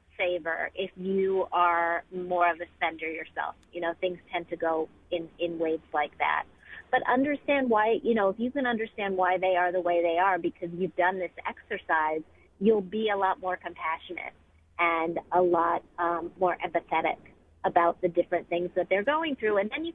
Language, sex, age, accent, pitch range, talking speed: English, female, 40-59, American, 170-200 Hz, 195 wpm